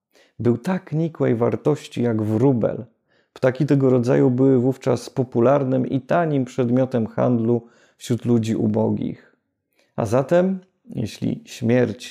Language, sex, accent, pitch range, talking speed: Polish, male, native, 115-140 Hz, 115 wpm